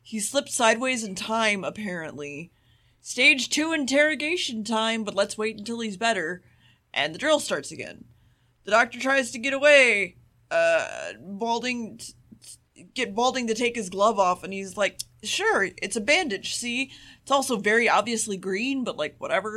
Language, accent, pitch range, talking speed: English, American, 190-255 Hz, 165 wpm